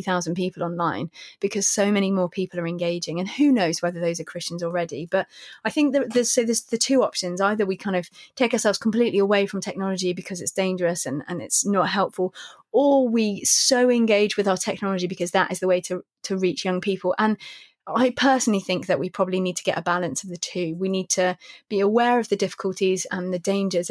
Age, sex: 20-39, female